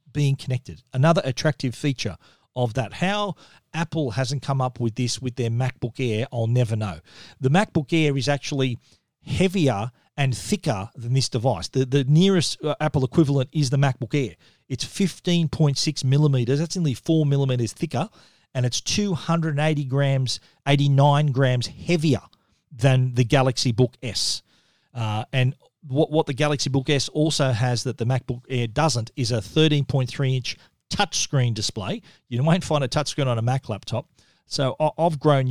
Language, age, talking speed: English, 40-59, 160 wpm